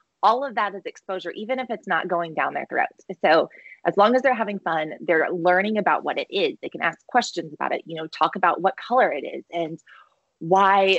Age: 20-39